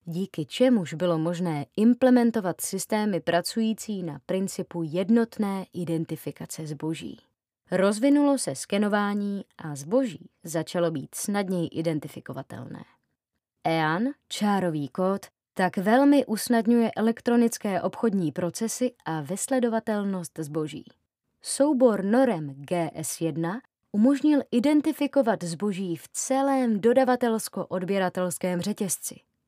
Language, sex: Czech, female